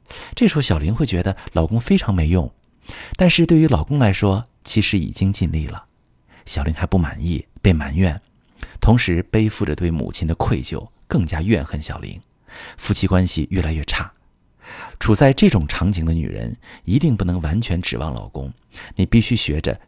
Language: Chinese